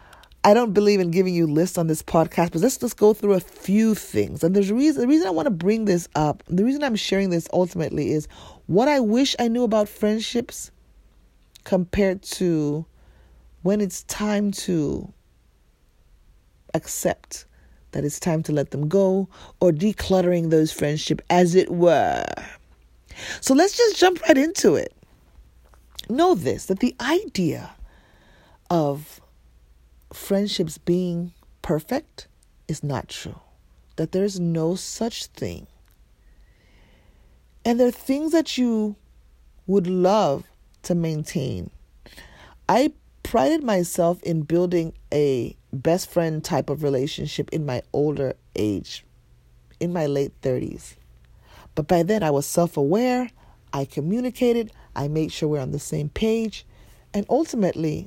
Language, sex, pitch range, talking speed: English, female, 145-210 Hz, 140 wpm